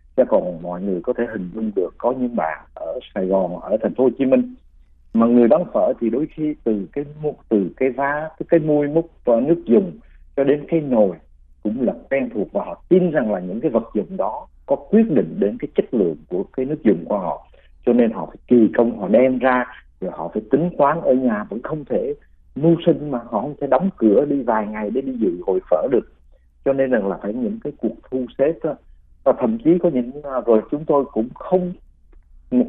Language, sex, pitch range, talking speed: Vietnamese, male, 90-145 Hz, 235 wpm